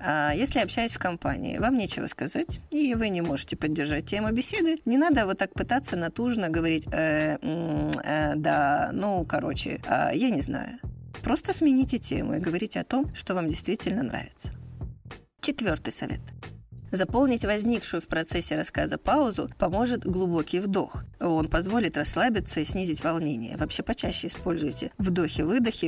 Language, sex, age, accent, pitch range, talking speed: Russian, female, 20-39, native, 160-235 Hz, 145 wpm